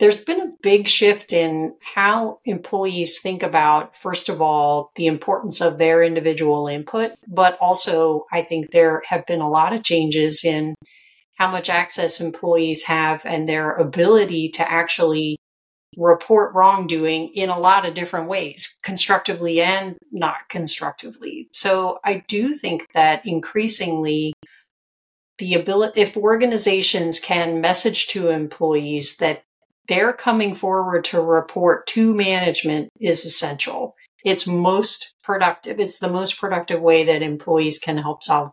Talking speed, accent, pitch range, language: 140 wpm, American, 160-195 Hz, English